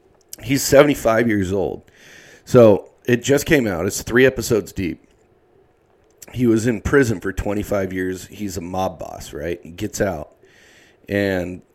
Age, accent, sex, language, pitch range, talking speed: 40-59, American, male, English, 90-115 Hz, 150 wpm